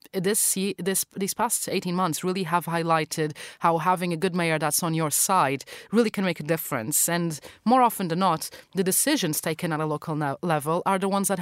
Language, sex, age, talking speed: English, female, 30-49, 205 wpm